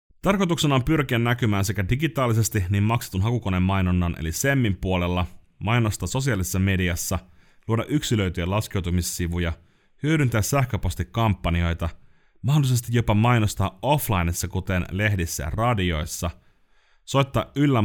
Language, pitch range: Finnish, 85-115 Hz